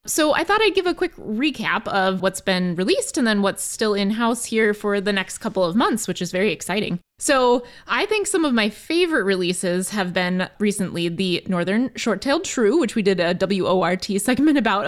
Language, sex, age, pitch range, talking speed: English, female, 20-39, 195-245 Hz, 200 wpm